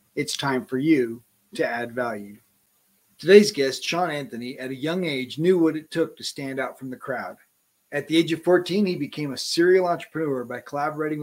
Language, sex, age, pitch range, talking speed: English, male, 40-59, 135-180 Hz, 200 wpm